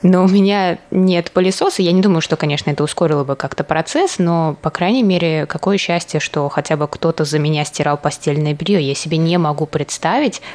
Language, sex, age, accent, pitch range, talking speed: Russian, female, 20-39, native, 140-170 Hz, 200 wpm